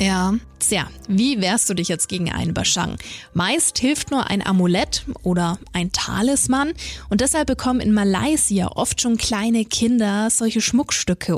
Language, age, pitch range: German, 20-39, 195-240 Hz